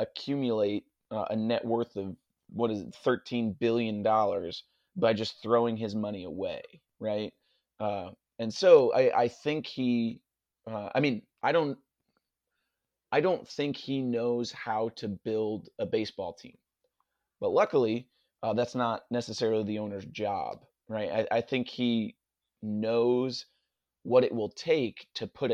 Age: 30-49